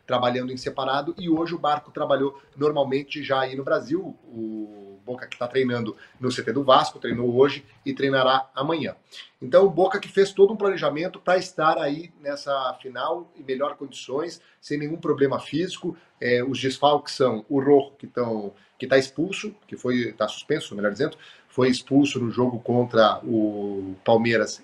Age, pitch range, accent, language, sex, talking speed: 40-59, 120-155 Hz, Brazilian, Portuguese, male, 170 wpm